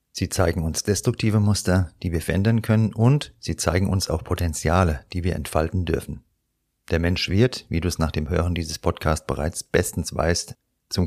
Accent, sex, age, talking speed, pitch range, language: German, male, 40-59, 185 wpm, 85-105 Hz, German